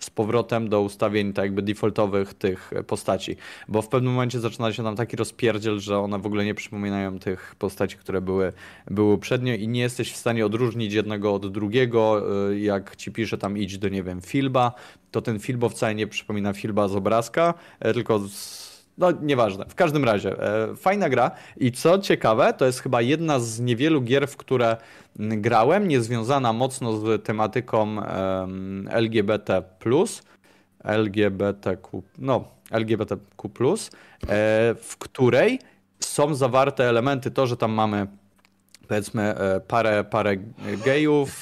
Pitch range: 100-125 Hz